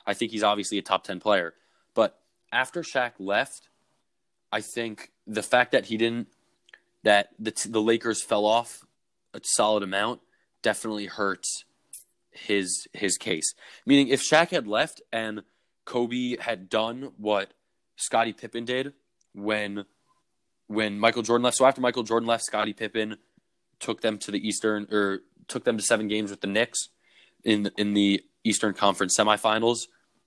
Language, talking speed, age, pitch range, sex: English, 155 wpm, 20-39, 100-120 Hz, male